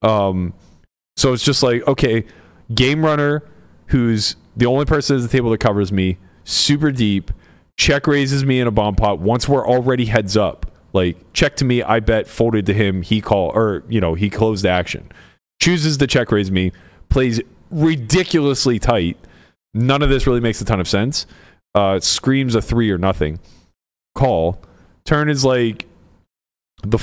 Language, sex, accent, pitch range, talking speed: English, male, American, 90-125 Hz, 170 wpm